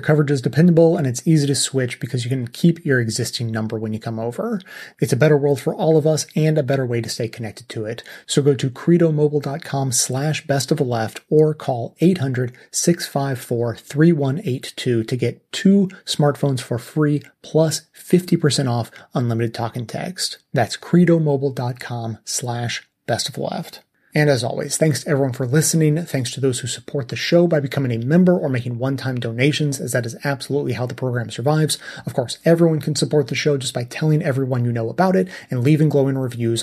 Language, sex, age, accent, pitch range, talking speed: English, male, 30-49, American, 125-155 Hz, 185 wpm